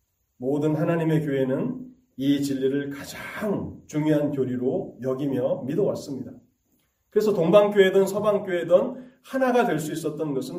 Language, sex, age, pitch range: Korean, male, 40-59, 115-180 Hz